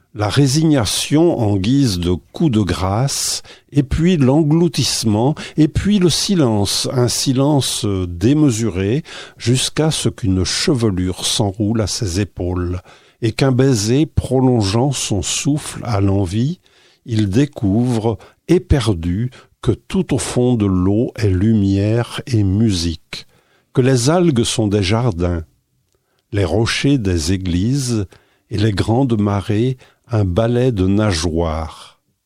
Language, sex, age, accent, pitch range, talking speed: French, male, 50-69, French, 100-135 Hz, 120 wpm